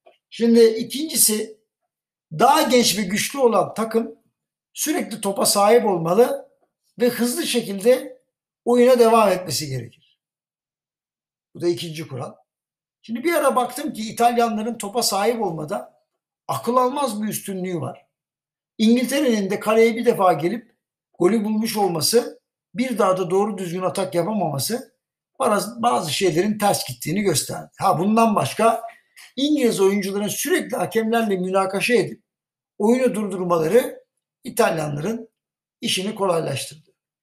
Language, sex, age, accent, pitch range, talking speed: Turkish, male, 60-79, native, 185-245 Hz, 120 wpm